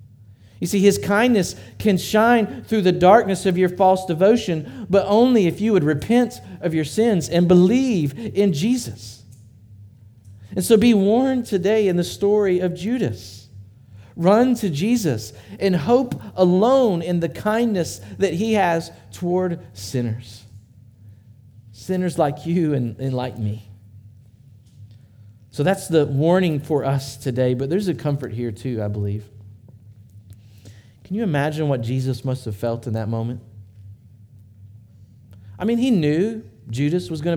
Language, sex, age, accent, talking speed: English, male, 50-69, American, 145 wpm